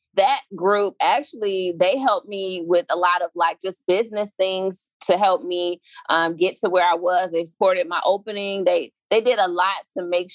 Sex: female